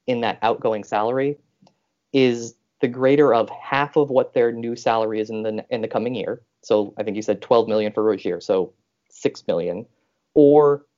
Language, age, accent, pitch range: English, 20-39, American, 110-155 Hz